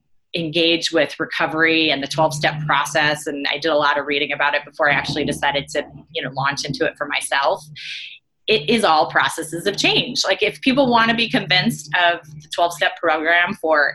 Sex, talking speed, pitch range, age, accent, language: female, 200 wpm, 145-170 Hz, 20-39, American, English